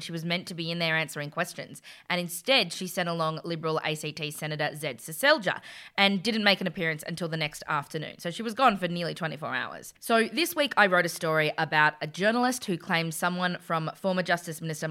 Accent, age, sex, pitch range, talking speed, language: Australian, 20-39, female, 165-225 Hz, 215 wpm, English